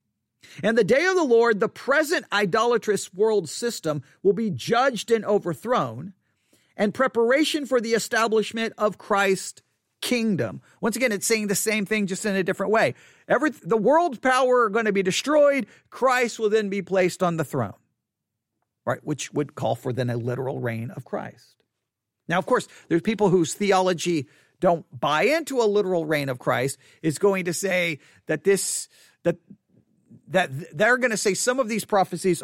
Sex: male